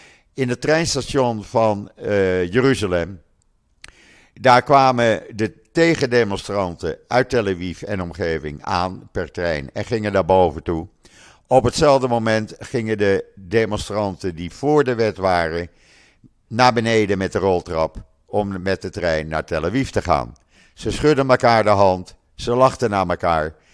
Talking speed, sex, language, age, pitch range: 145 wpm, male, Dutch, 50-69, 90-115 Hz